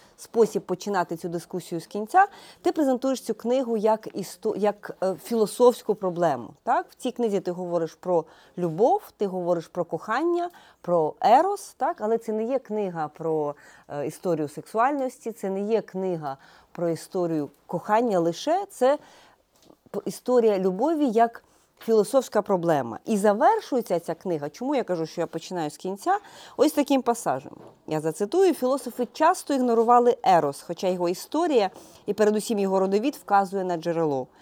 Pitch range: 175-255 Hz